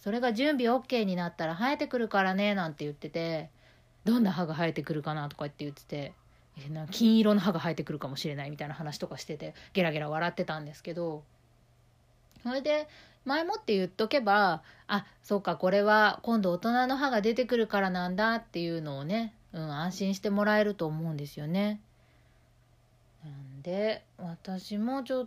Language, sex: Japanese, female